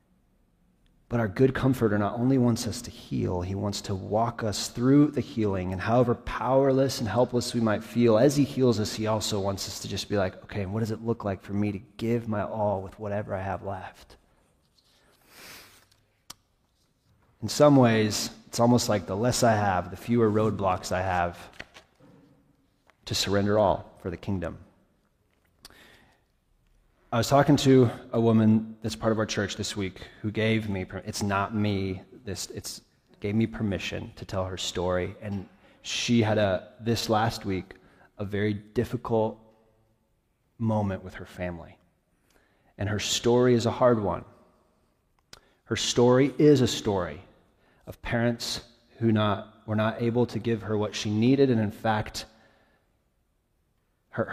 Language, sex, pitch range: English, male, 100-115 Hz